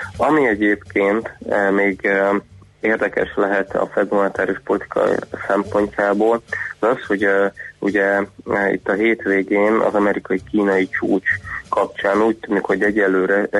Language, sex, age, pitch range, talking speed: Hungarian, male, 20-39, 95-105 Hz, 100 wpm